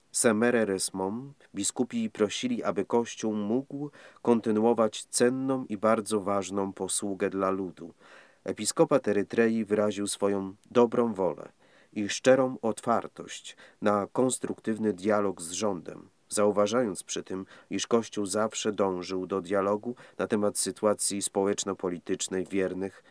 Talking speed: 110 wpm